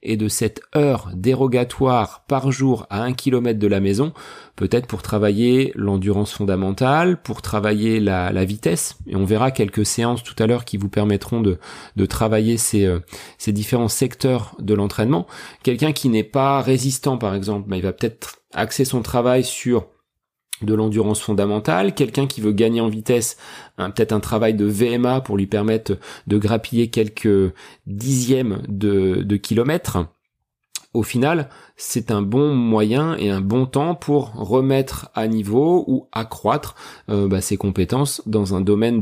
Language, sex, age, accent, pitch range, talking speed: French, male, 30-49, French, 100-130 Hz, 165 wpm